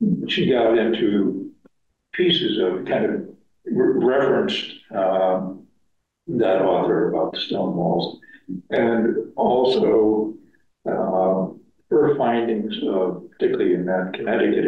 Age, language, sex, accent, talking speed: 50-69, English, male, American, 105 wpm